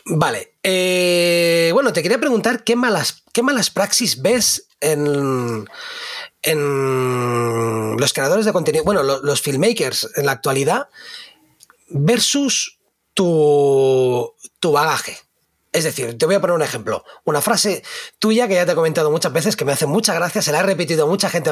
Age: 30-49